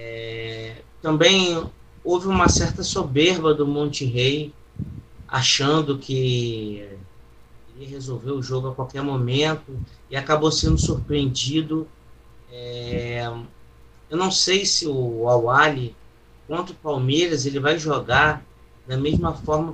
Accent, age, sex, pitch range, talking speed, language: Brazilian, 20-39, male, 125-155 Hz, 110 wpm, Portuguese